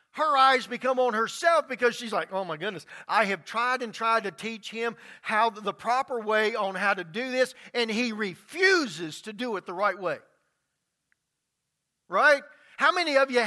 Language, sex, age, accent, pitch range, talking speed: English, male, 50-69, American, 195-255 Hz, 185 wpm